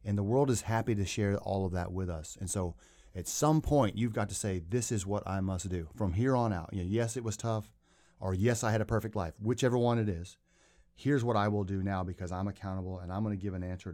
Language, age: English, 30-49